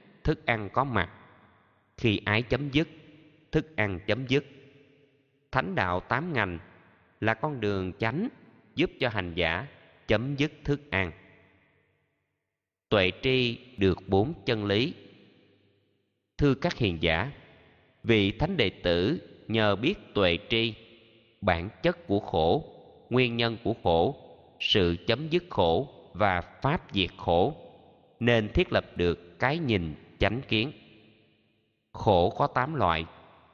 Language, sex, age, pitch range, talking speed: Vietnamese, male, 20-39, 90-125 Hz, 130 wpm